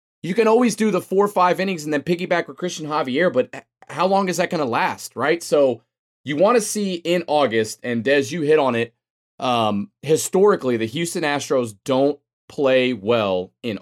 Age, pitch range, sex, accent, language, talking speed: 20-39, 125-170 Hz, male, American, English, 200 wpm